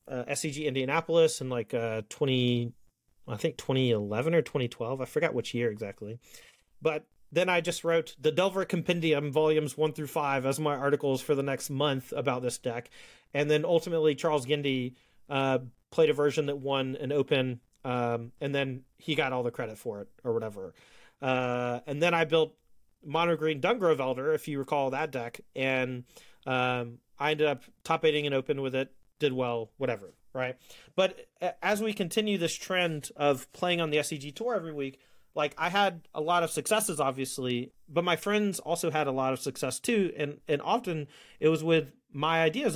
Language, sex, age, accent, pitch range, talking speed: English, male, 30-49, American, 130-165 Hz, 185 wpm